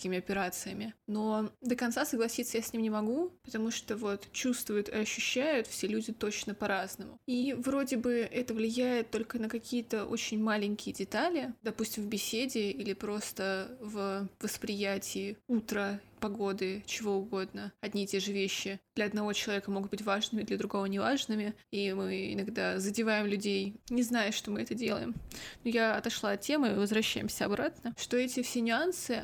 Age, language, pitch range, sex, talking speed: 20-39, Russian, 205-245 Hz, female, 160 wpm